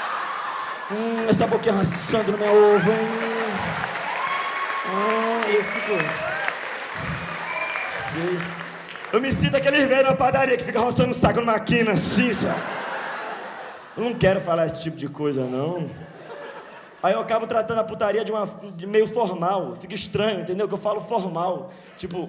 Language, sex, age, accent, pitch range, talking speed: Portuguese, male, 20-39, Brazilian, 170-220 Hz, 150 wpm